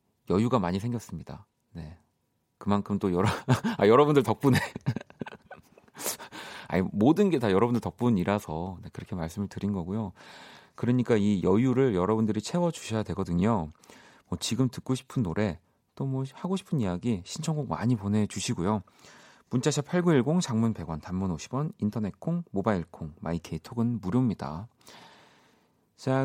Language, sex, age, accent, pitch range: Korean, male, 40-59, native, 90-135 Hz